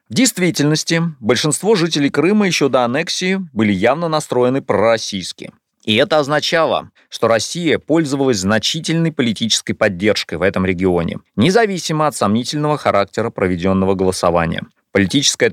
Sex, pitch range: male, 105-155 Hz